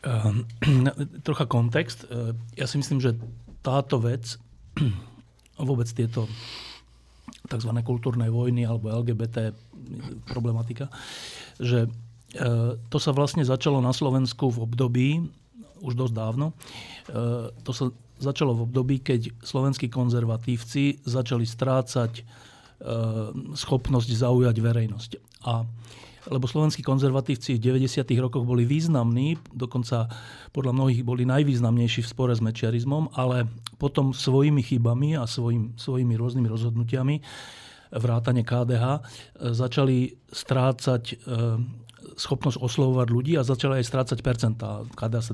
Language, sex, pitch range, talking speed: Slovak, male, 115-135 Hz, 110 wpm